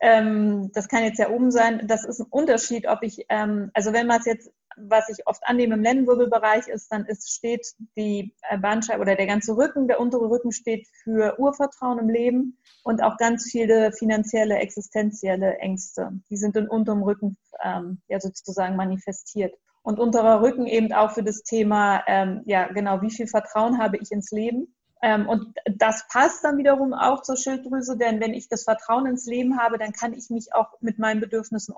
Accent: German